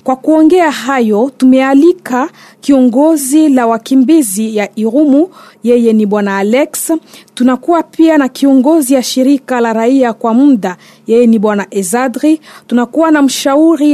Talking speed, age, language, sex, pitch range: 130 wpm, 40-59, French, female, 230-290 Hz